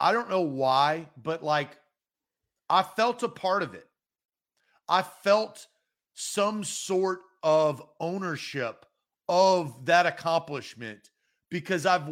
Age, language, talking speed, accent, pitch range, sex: 40-59, English, 115 wpm, American, 140-185 Hz, male